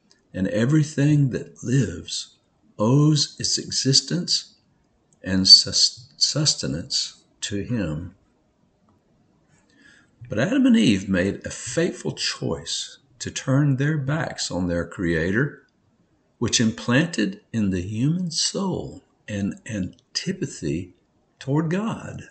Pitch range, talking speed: 95-145 Hz, 95 wpm